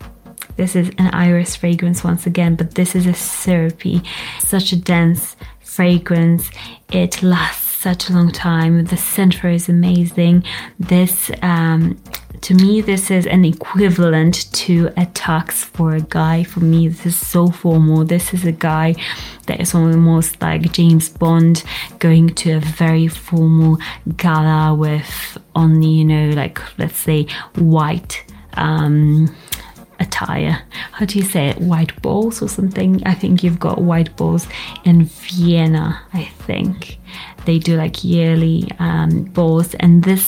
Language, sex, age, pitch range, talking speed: English, female, 20-39, 160-180 Hz, 145 wpm